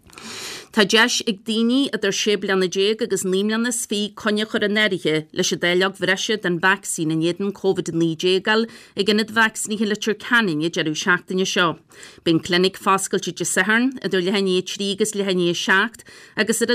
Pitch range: 185-225 Hz